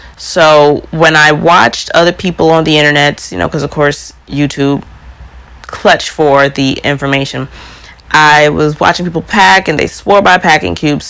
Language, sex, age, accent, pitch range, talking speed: English, female, 30-49, American, 135-165 Hz, 160 wpm